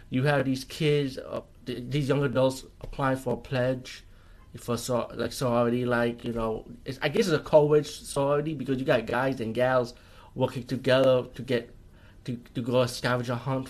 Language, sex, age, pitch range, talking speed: English, male, 20-39, 115-130 Hz, 190 wpm